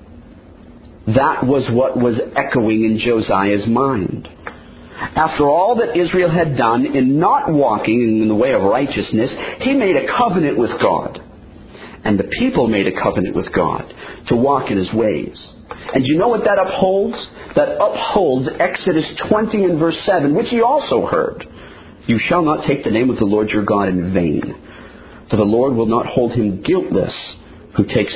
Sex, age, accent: male, 50-69, American